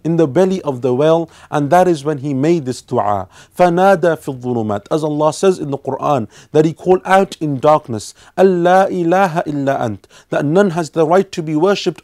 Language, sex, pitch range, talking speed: English, male, 135-175 Hz, 195 wpm